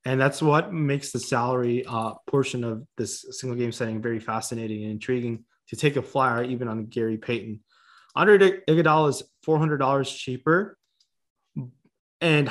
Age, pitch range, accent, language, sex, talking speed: 20-39, 120-150 Hz, American, English, male, 145 wpm